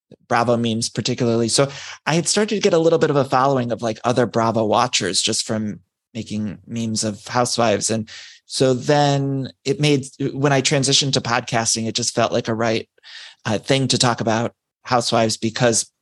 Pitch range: 115-135 Hz